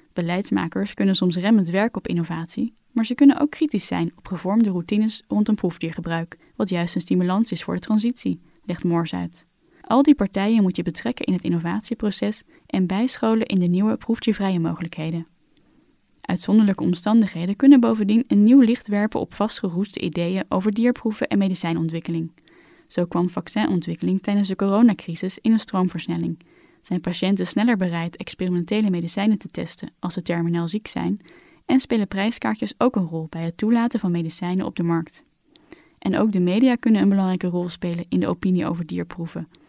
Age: 10-29